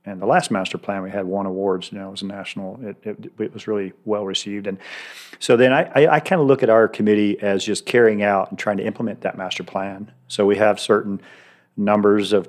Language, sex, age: English, male, 40-59